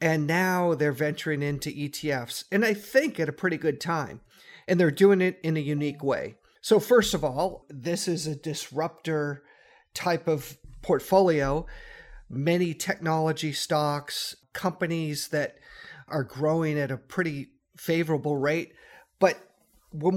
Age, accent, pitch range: 50-69, American, 145-175 Hz